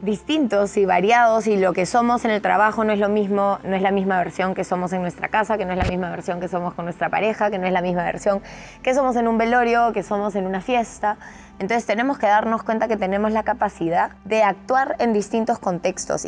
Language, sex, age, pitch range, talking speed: Spanish, female, 20-39, 175-210 Hz, 240 wpm